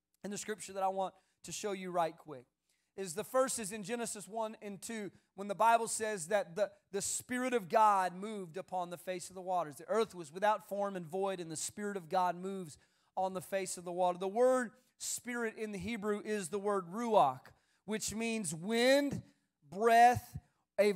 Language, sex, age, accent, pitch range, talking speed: English, male, 40-59, American, 195-240 Hz, 205 wpm